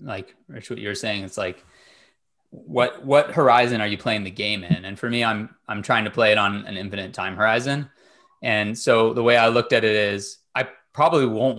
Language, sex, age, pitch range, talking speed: English, male, 20-39, 100-120 Hz, 220 wpm